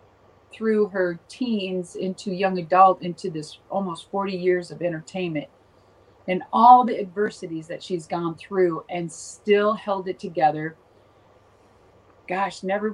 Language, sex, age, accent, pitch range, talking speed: English, female, 40-59, American, 160-200 Hz, 130 wpm